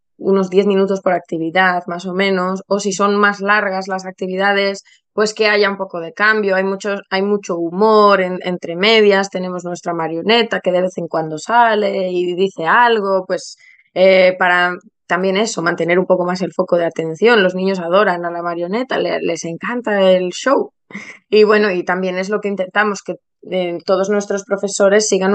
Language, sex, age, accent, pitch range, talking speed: Spanish, female, 20-39, Spanish, 180-215 Hz, 185 wpm